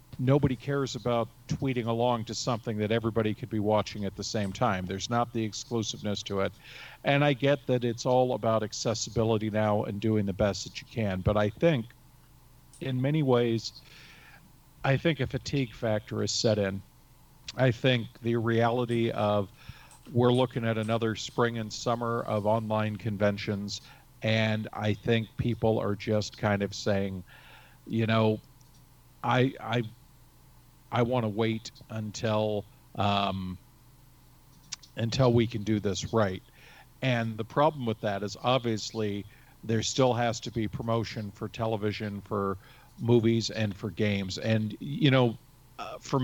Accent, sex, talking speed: American, male, 150 wpm